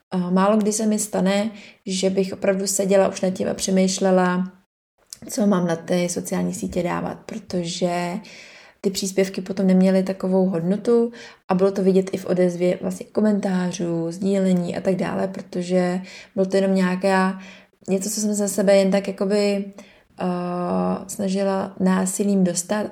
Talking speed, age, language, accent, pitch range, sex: 150 wpm, 20-39, Czech, native, 185-200 Hz, female